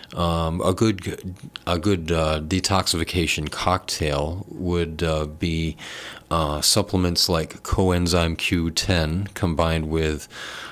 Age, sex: 40-59, male